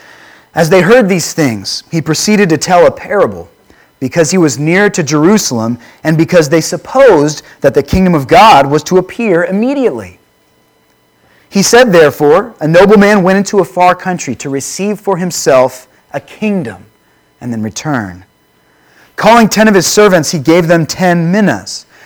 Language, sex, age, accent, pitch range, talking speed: English, male, 30-49, American, 140-205 Hz, 160 wpm